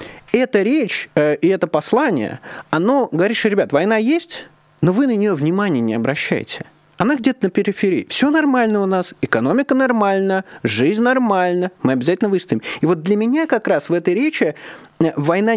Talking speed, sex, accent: 170 wpm, male, native